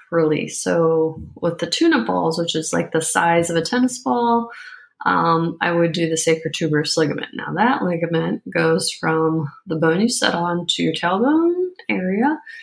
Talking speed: 175 wpm